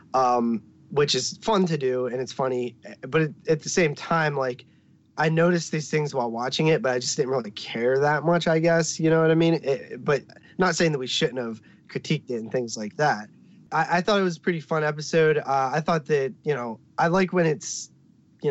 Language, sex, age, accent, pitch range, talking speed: English, male, 20-39, American, 115-160 Hz, 235 wpm